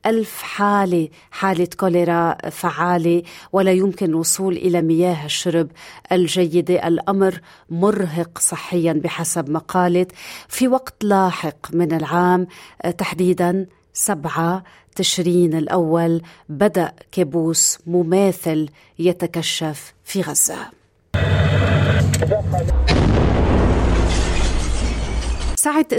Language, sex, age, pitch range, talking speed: Arabic, female, 40-59, 165-195 Hz, 75 wpm